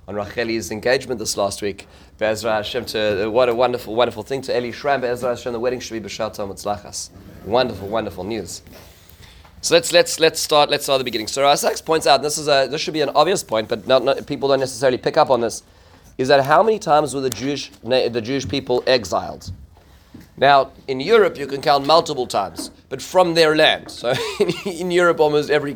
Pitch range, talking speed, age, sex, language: 110-150 Hz, 205 wpm, 30-49, male, English